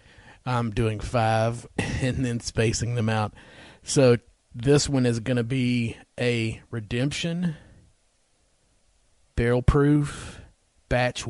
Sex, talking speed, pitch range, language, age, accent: male, 105 wpm, 105-125 Hz, English, 40-59, American